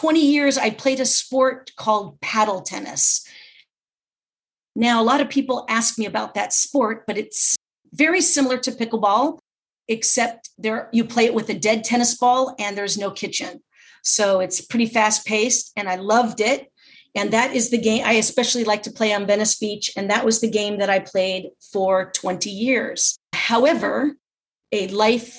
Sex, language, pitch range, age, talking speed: female, English, 205-245 Hz, 40-59, 175 wpm